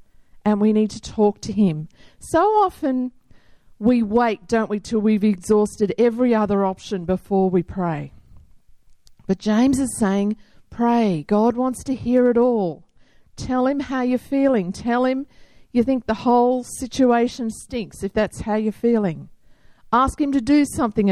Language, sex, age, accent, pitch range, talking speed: English, female, 50-69, Australian, 200-255 Hz, 160 wpm